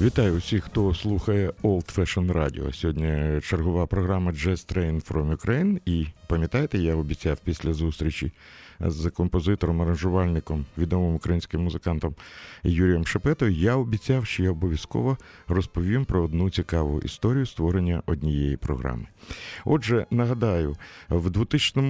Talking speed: 120 wpm